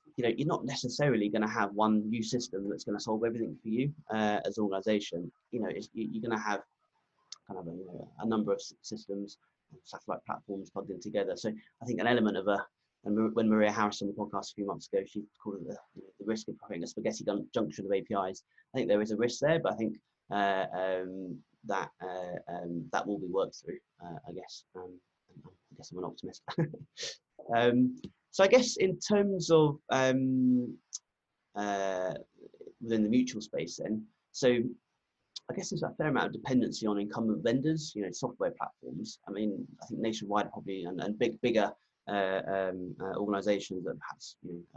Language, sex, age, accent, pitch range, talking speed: English, male, 20-39, British, 100-120 Hz, 200 wpm